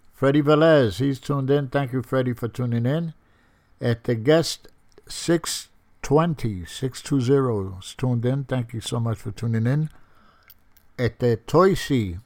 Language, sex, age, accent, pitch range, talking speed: English, male, 60-79, American, 105-135 Hz, 140 wpm